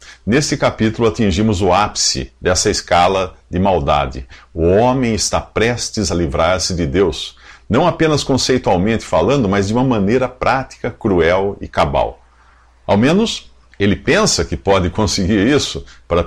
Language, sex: Portuguese, male